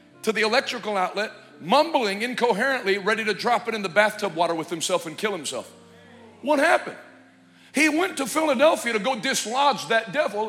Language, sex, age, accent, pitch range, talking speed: English, male, 50-69, American, 220-295 Hz, 170 wpm